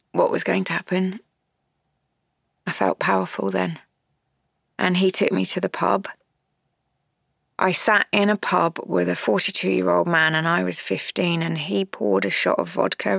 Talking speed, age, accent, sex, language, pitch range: 165 wpm, 20-39, British, female, English, 145-190 Hz